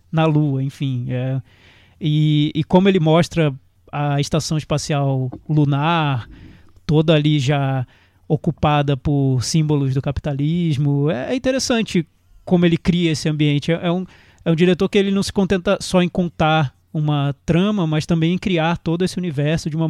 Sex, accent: male, Brazilian